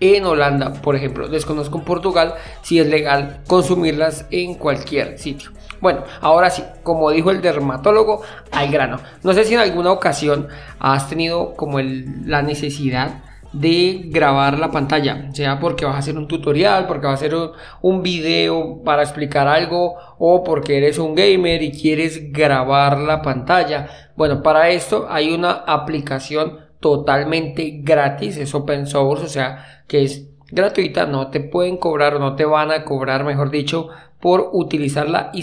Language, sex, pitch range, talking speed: Spanish, male, 145-175 Hz, 160 wpm